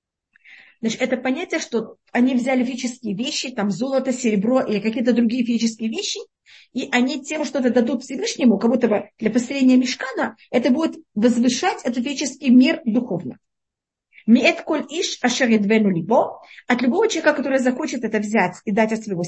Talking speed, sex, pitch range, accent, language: 160 wpm, female, 220-275 Hz, native, Russian